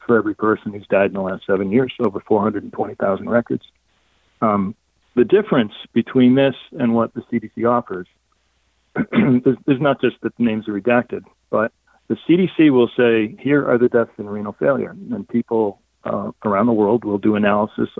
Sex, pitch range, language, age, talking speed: male, 100-125 Hz, English, 40-59, 175 wpm